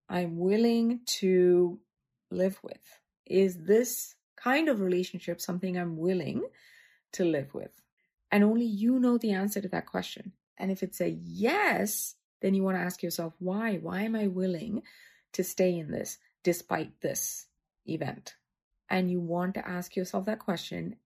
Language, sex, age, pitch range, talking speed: English, female, 30-49, 180-220 Hz, 160 wpm